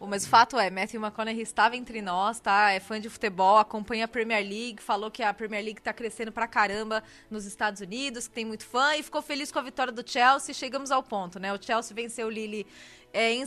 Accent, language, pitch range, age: Brazilian, Portuguese, 225-290 Hz, 20-39